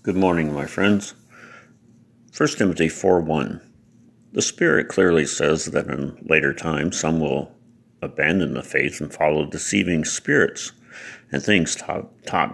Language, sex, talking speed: English, male, 135 wpm